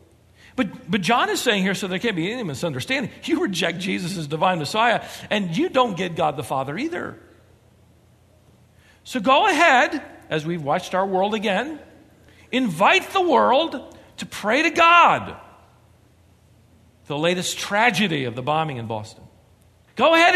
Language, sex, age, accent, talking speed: English, male, 50-69, American, 155 wpm